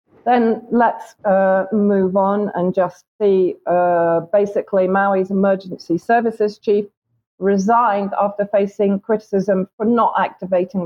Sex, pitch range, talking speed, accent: female, 175-205 Hz, 115 wpm, British